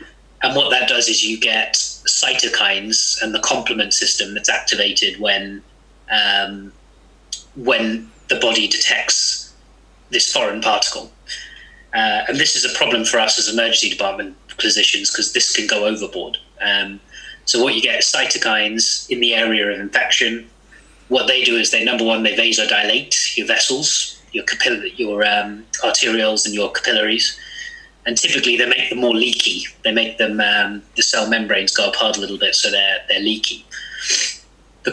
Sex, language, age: male, English, 30-49